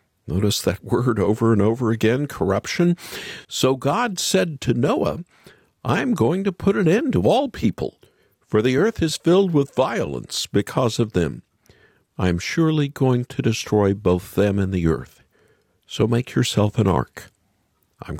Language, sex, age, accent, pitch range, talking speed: English, male, 50-69, American, 100-160 Hz, 165 wpm